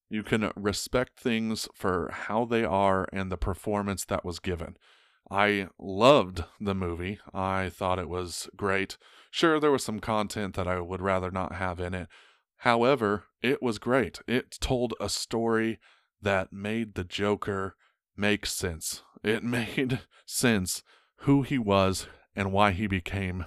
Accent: American